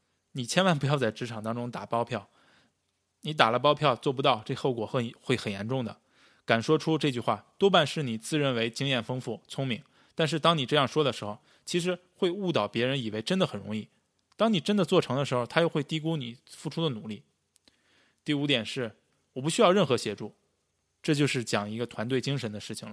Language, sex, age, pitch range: Chinese, male, 20-39, 115-155 Hz